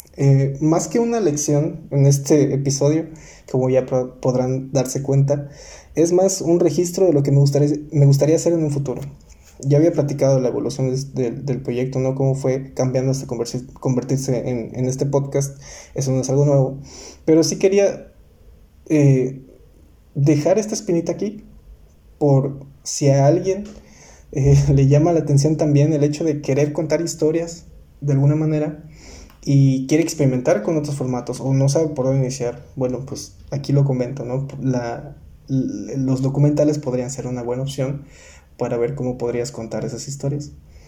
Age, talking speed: 20-39, 170 wpm